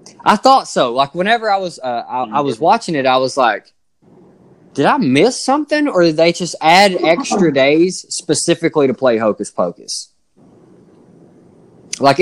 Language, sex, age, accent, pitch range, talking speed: English, male, 20-39, American, 105-135 Hz, 160 wpm